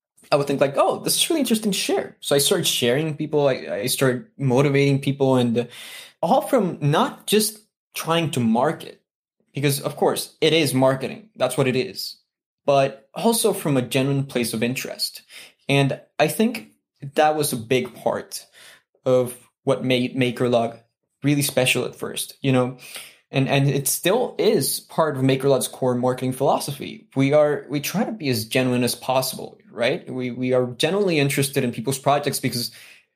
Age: 20-39